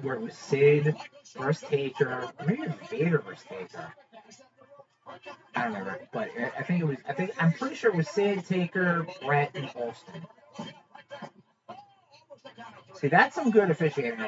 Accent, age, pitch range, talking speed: American, 30-49, 160-230 Hz, 170 wpm